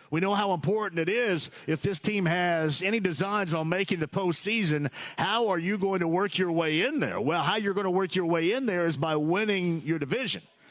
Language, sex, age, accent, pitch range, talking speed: English, male, 50-69, American, 170-220 Hz, 230 wpm